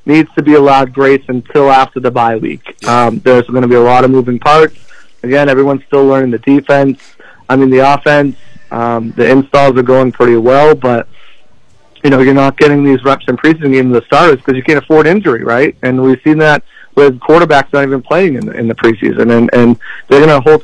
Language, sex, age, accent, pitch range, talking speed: English, male, 40-59, American, 125-140 Hz, 220 wpm